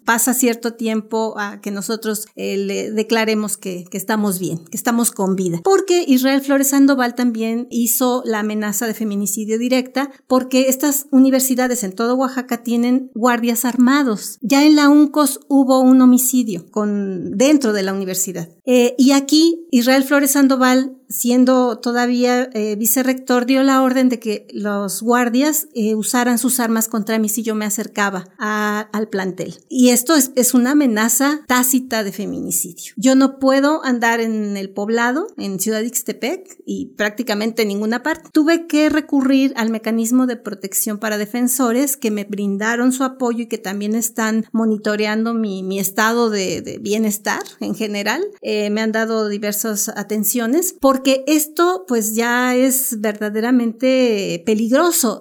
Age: 40-59